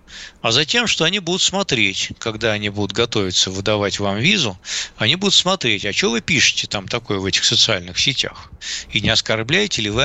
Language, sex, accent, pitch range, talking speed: Russian, male, native, 105-150 Hz, 185 wpm